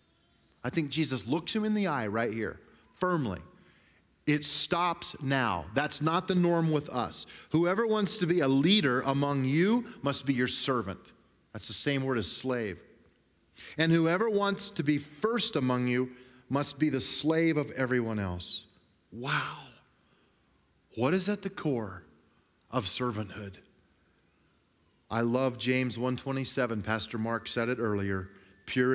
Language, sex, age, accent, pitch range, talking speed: English, male, 40-59, American, 100-135 Hz, 150 wpm